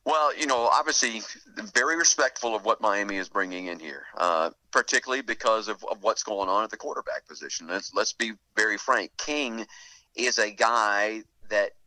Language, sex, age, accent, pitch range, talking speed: English, male, 50-69, American, 100-125 Hz, 175 wpm